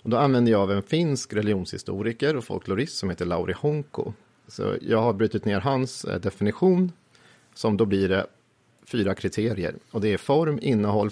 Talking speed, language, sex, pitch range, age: 175 wpm, Swedish, male, 100-125 Hz, 40-59